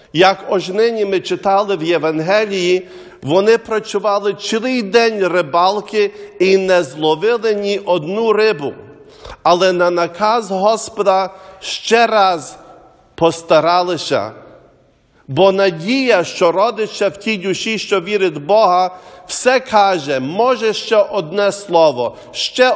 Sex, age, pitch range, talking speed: male, 50-69, 175-215 Hz, 115 wpm